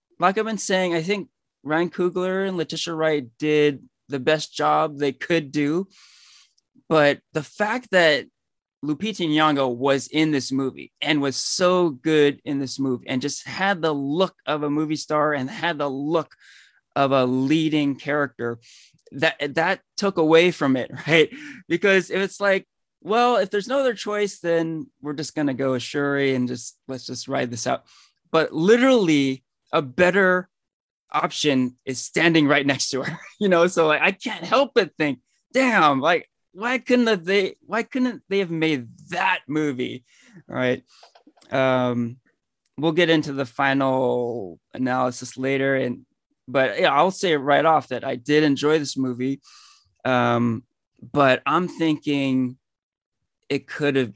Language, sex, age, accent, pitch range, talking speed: English, male, 20-39, American, 135-180 Hz, 160 wpm